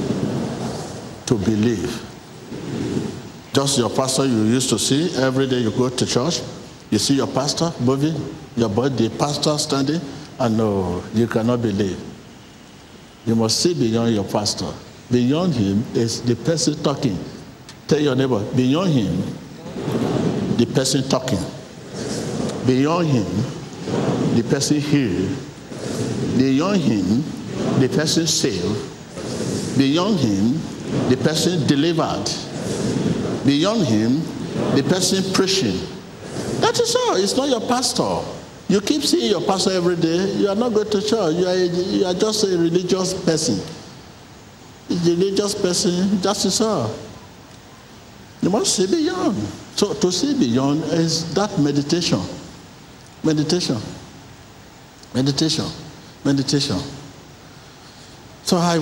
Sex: male